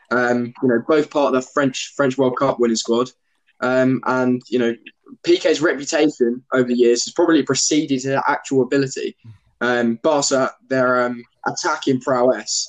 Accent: British